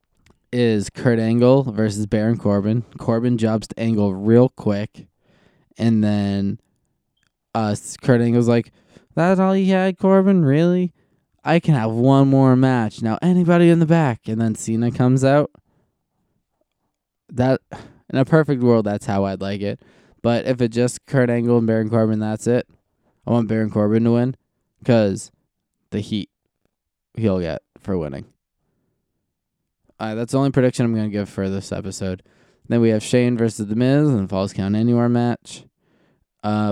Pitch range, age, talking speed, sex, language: 100-120 Hz, 20-39, 165 wpm, male, English